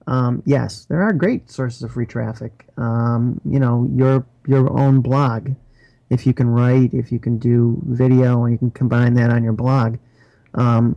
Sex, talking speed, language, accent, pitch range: male, 185 wpm, English, American, 120-135 Hz